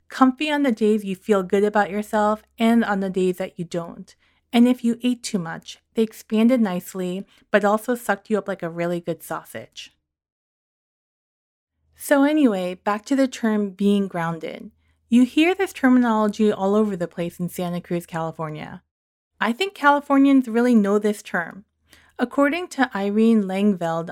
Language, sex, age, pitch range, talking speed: English, female, 30-49, 180-230 Hz, 165 wpm